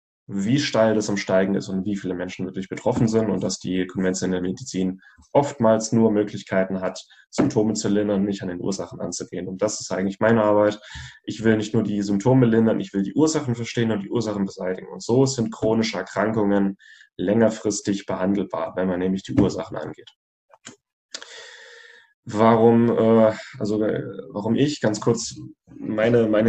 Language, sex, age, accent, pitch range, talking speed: German, male, 10-29, German, 100-115 Hz, 165 wpm